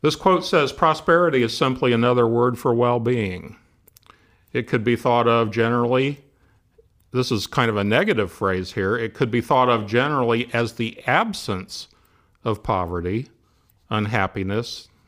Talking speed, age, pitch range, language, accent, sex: 145 wpm, 50-69, 105-125 Hz, English, American, male